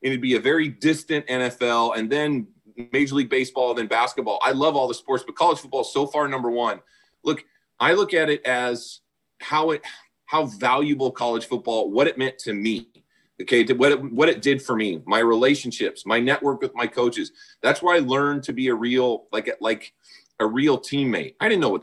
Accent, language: American, English